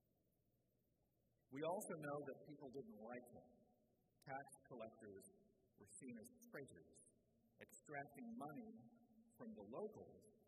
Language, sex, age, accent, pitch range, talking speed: English, male, 50-69, American, 130-170 Hz, 110 wpm